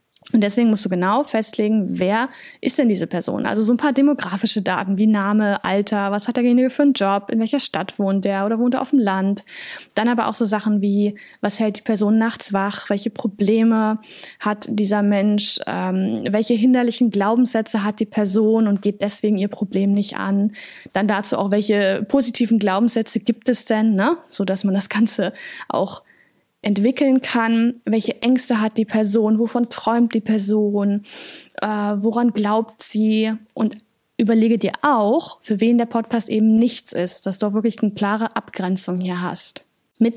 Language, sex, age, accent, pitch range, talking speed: German, female, 10-29, German, 205-235 Hz, 180 wpm